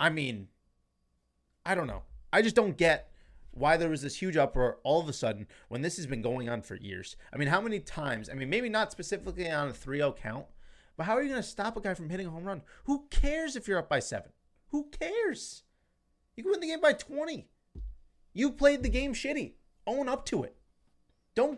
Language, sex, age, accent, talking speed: English, male, 30-49, American, 225 wpm